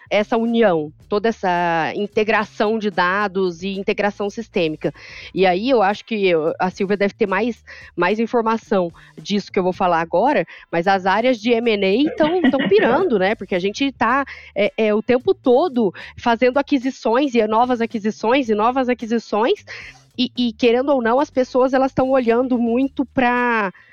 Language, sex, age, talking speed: Portuguese, female, 20-39, 155 wpm